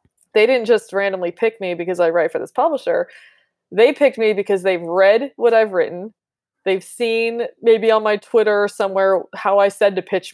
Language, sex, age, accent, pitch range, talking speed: English, female, 20-39, American, 185-245 Hz, 195 wpm